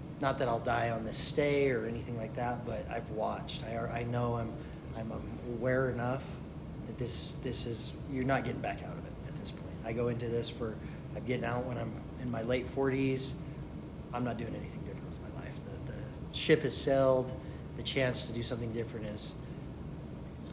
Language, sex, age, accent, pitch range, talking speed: English, male, 30-49, American, 115-130 Hz, 210 wpm